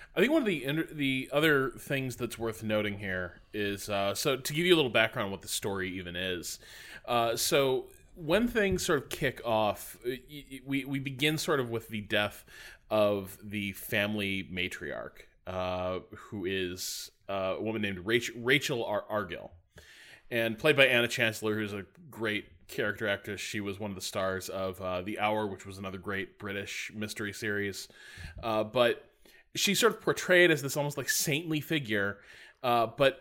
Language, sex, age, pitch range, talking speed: English, male, 20-39, 105-150 Hz, 180 wpm